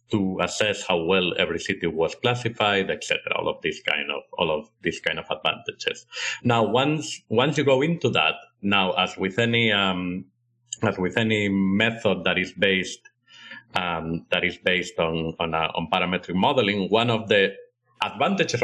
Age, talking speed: 50-69, 175 wpm